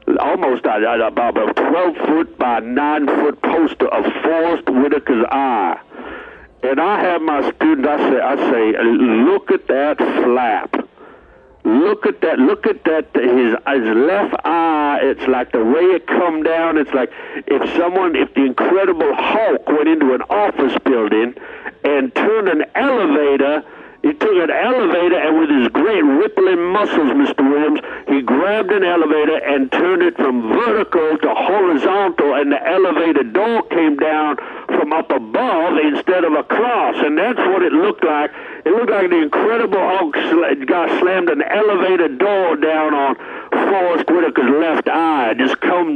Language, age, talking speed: English, 60-79, 155 wpm